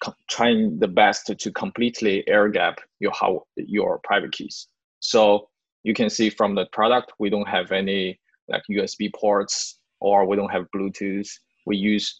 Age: 20-39